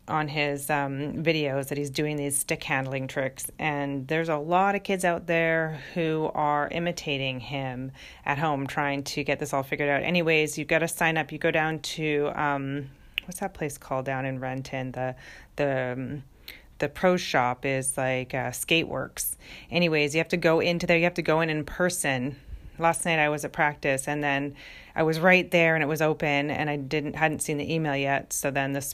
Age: 30-49